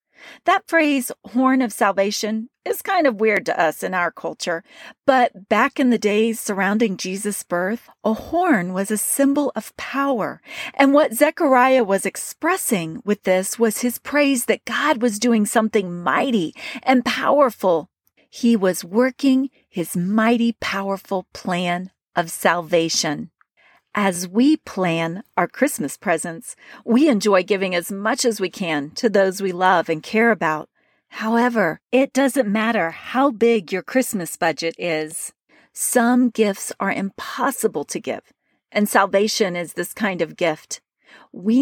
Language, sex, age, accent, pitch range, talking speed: English, female, 40-59, American, 190-255 Hz, 145 wpm